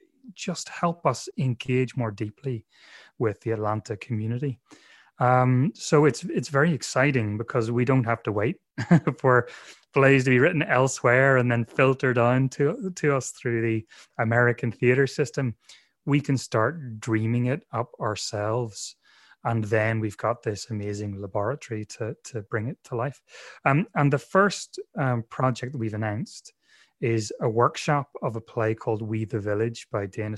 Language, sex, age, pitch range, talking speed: English, male, 30-49, 110-135 Hz, 160 wpm